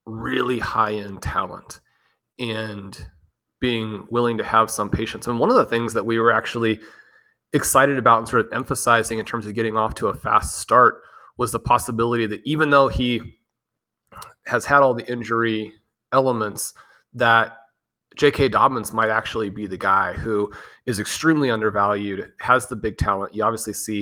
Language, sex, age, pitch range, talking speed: English, male, 30-49, 105-125 Hz, 165 wpm